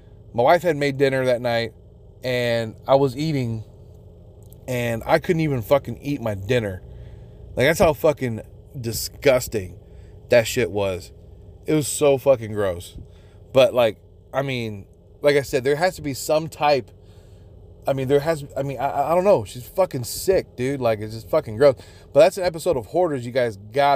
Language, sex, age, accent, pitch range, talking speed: English, male, 30-49, American, 105-135 Hz, 185 wpm